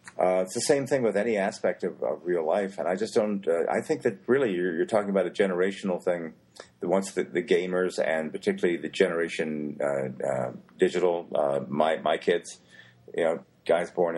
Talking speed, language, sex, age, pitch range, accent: 205 wpm, English, male, 50-69, 75-100 Hz, American